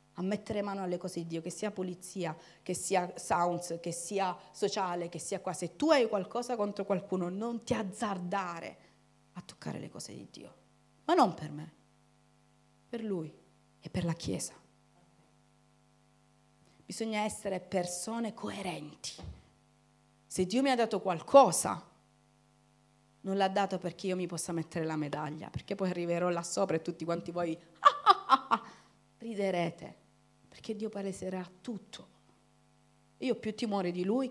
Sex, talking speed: female, 145 wpm